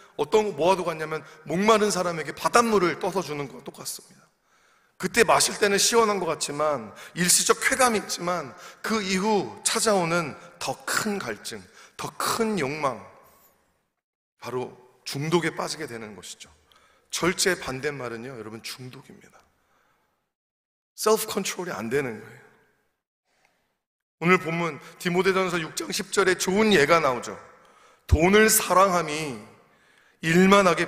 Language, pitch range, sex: Korean, 155-200 Hz, male